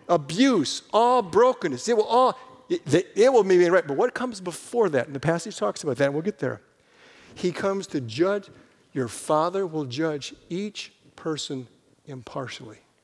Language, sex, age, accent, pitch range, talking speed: English, male, 50-69, American, 155-245 Hz, 170 wpm